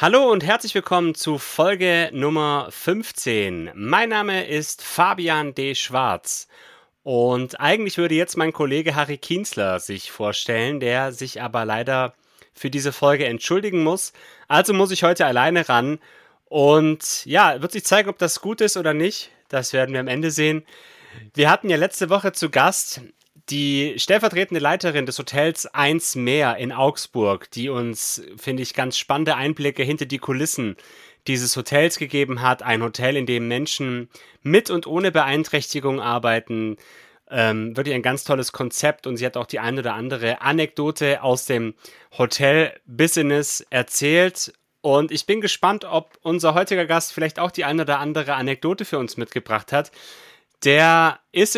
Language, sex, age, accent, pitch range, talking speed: German, male, 30-49, German, 130-170 Hz, 160 wpm